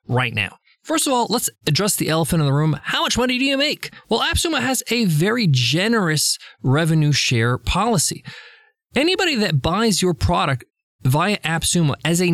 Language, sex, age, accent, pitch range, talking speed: English, male, 20-39, American, 135-210 Hz, 175 wpm